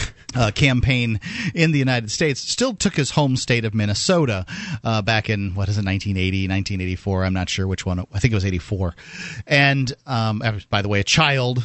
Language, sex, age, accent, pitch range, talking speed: English, male, 40-59, American, 105-140 Hz, 195 wpm